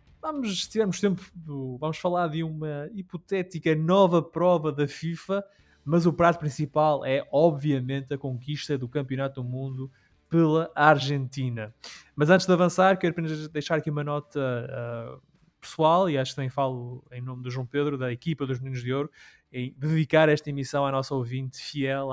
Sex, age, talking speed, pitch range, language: male, 20-39, 170 wpm, 135-170 Hz, Portuguese